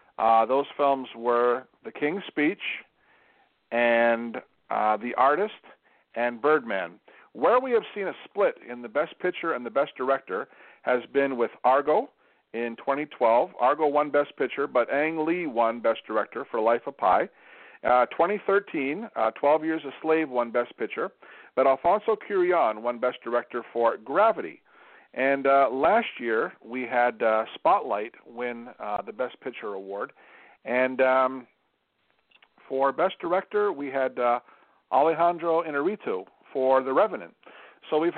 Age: 50-69